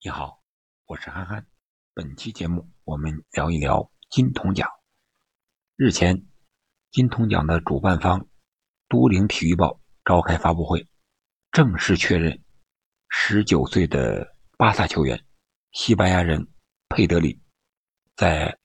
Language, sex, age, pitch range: Chinese, male, 50-69, 80-95 Hz